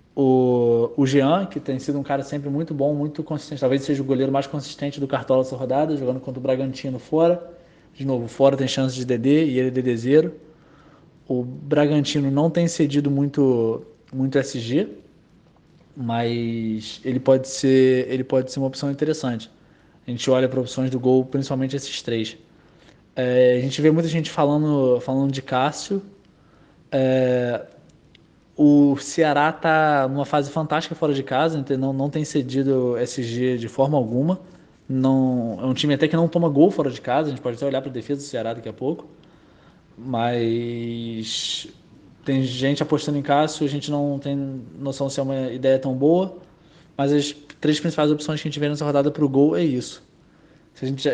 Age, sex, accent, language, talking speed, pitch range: 20-39, male, Brazilian, Portuguese, 180 wpm, 130-150 Hz